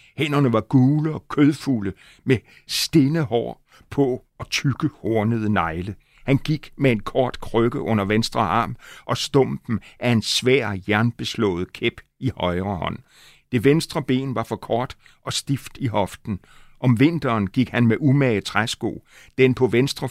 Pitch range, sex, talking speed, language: 105-130 Hz, male, 150 wpm, Danish